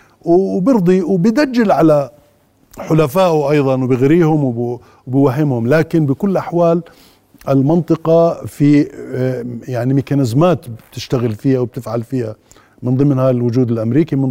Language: Arabic